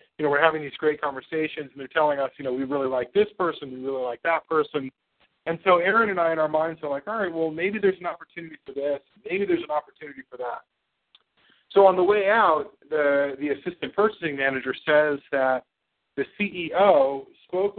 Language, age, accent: English, 40-59, American